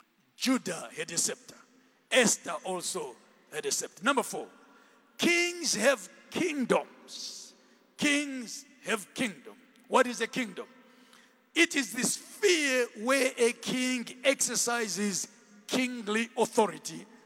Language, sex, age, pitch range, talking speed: English, male, 50-69, 200-250 Hz, 110 wpm